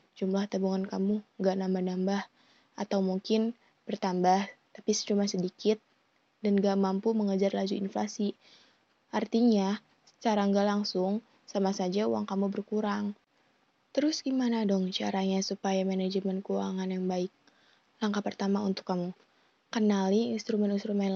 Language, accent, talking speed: Indonesian, native, 115 wpm